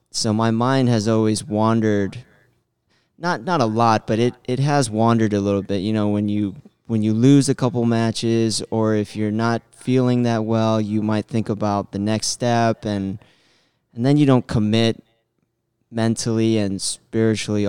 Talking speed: 175 wpm